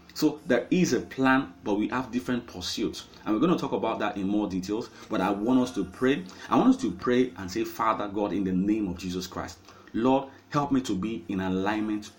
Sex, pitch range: male, 95-130 Hz